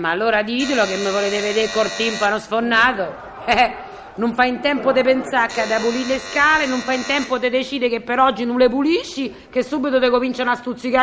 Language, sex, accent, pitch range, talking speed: Italian, female, native, 215-290 Hz, 230 wpm